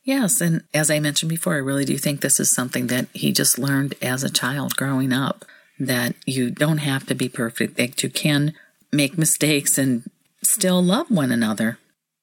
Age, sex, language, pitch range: 50-69, female, English, 140-195 Hz